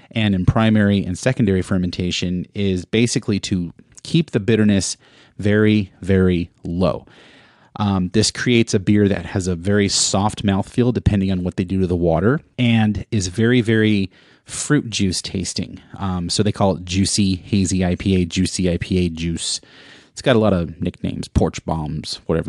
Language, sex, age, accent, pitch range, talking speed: English, male, 30-49, American, 90-115 Hz, 165 wpm